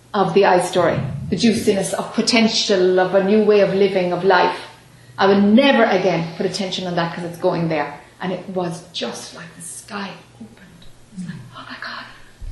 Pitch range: 180-230 Hz